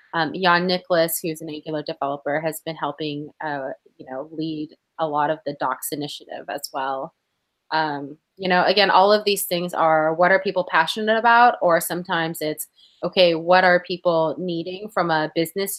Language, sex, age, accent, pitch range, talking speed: English, female, 20-39, American, 160-195 Hz, 180 wpm